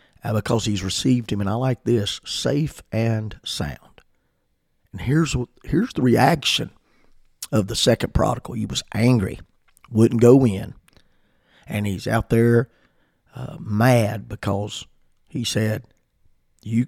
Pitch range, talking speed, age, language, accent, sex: 105-135 Hz, 130 wpm, 50-69, English, American, male